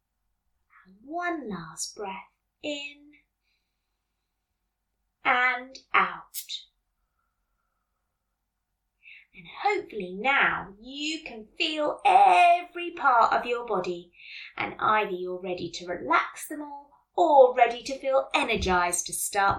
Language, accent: English, British